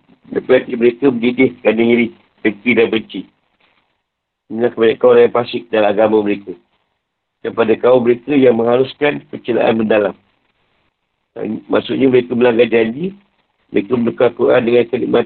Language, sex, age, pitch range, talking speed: Malay, male, 50-69, 110-130 Hz, 135 wpm